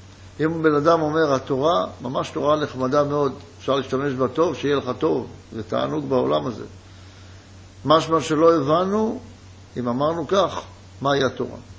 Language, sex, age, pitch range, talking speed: Hebrew, male, 60-79, 95-145 Hz, 145 wpm